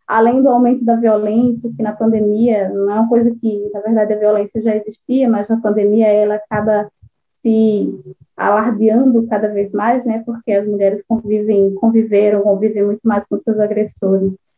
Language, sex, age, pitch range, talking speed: Portuguese, female, 10-29, 205-235 Hz, 170 wpm